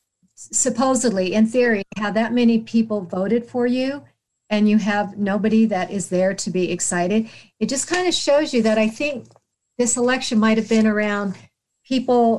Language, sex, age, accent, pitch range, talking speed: English, female, 50-69, American, 190-225 Hz, 175 wpm